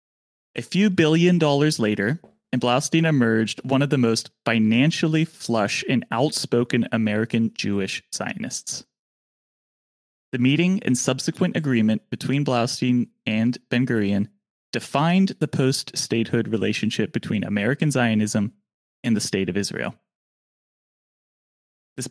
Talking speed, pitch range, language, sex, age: 110 wpm, 110-150 Hz, English, male, 20-39